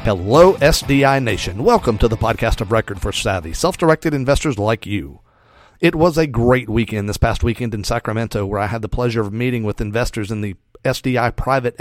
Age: 40-59